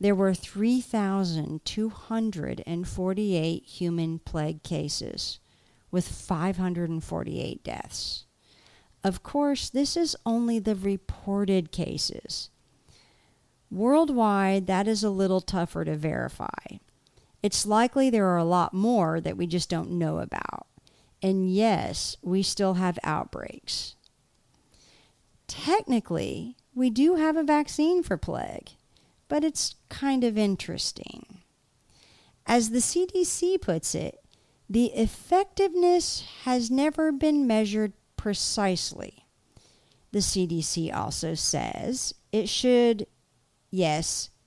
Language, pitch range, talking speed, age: English, 180-260 Hz, 105 wpm, 50-69